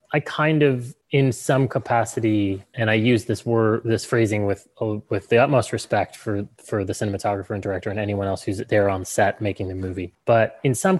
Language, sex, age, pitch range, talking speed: English, male, 20-39, 105-120 Hz, 205 wpm